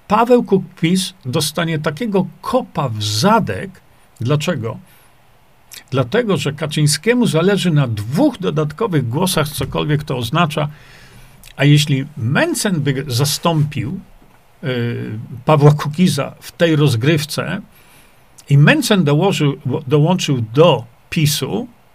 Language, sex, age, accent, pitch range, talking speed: Polish, male, 50-69, native, 135-180 Hz, 100 wpm